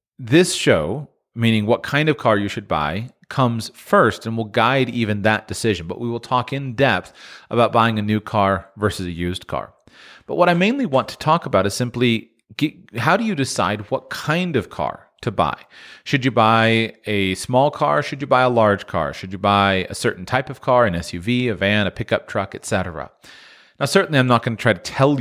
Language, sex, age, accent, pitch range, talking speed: English, male, 40-59, American, 100-130 Hz, 215 wpm